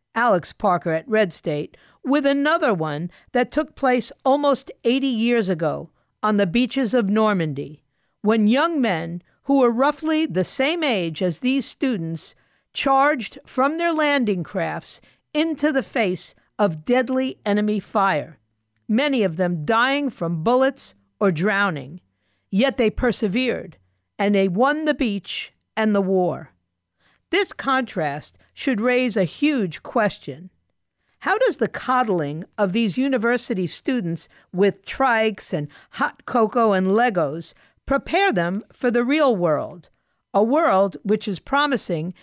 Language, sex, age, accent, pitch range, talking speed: English, female, 50-69, American, 185-265 Hz, 135 wpm